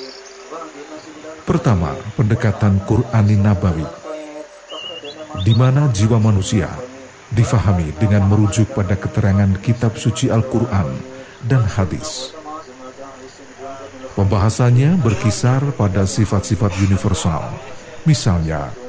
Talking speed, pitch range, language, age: 75 wpm, 100-135 Hz, Indonesian, 50-69